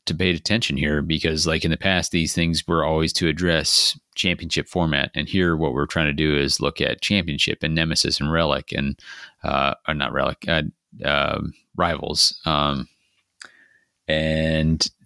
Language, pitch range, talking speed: English, 75-85 Hz, 165 wpm